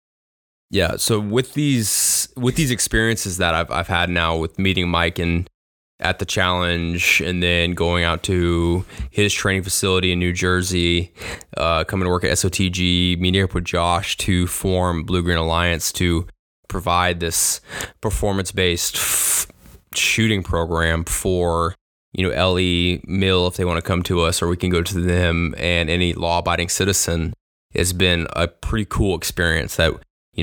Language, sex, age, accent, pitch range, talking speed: English, male, 20-39, American, 85-95 Hz, 165 wpm